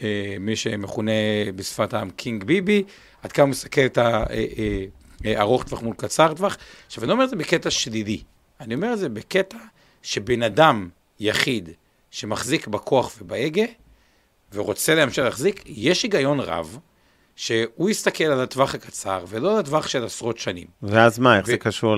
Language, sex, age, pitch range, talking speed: Hebrew, male, 50-69, 100-150 Hz, 150 wpm